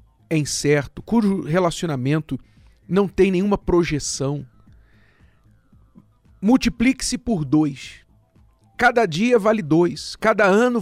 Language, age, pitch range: Portuguese, 40-59, 125-195 Hz